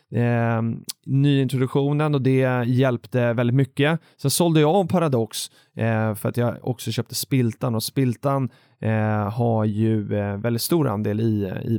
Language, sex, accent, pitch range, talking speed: Swedish, male, native, 115-140 Hz, 160 wpm